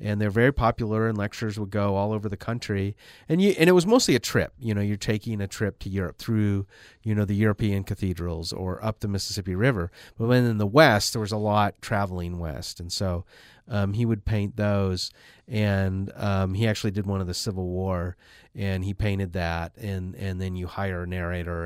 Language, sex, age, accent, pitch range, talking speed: English, male, 30-49, American, 95-110 Hz, 215 wpm